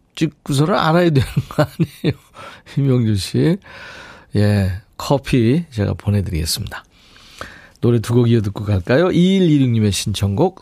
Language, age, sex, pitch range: Korean, 50-69, male, 105-165 Hz